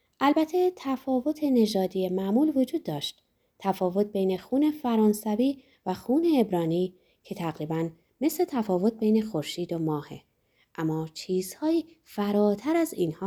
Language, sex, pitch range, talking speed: Persian, female, 180-275 Hz, 120 wpm